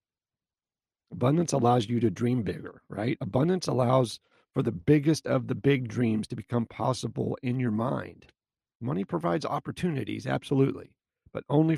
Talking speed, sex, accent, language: 145 wpm, male, American, English